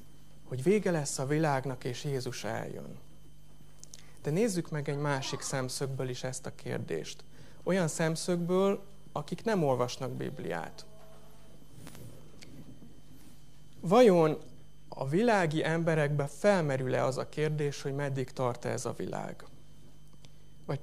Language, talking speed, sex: Hungarian, 115 wpm, male